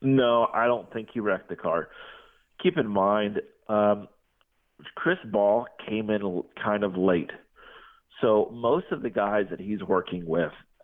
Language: English